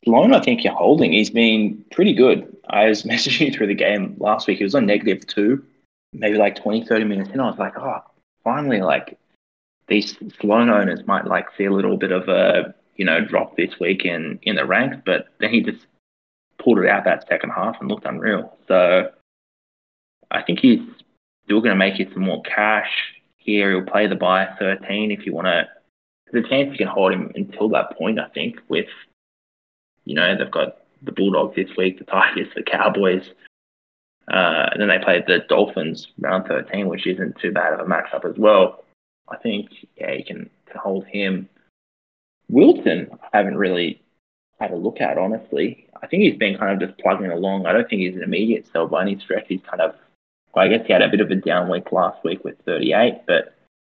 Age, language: 20-39, English